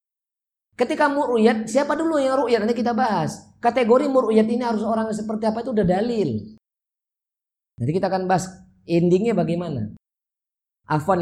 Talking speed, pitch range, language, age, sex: 140 wpm, 120-185 Hz, Indonesian, 20-39, male